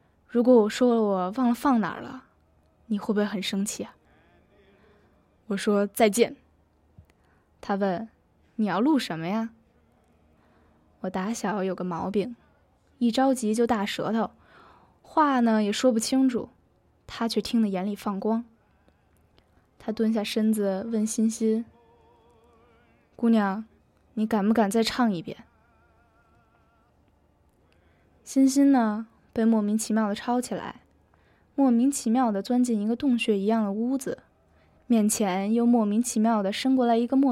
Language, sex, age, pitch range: Chinese, female, 10-29, 190-235 Hz